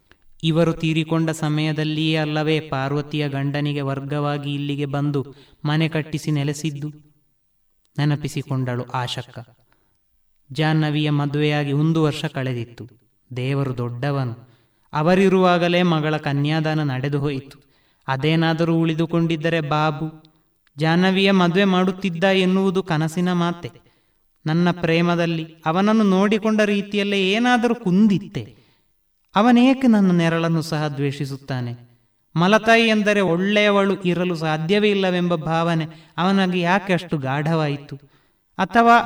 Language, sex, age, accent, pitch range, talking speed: Kannada, male, 20-39, native, 140-180 Hz, 90 wpm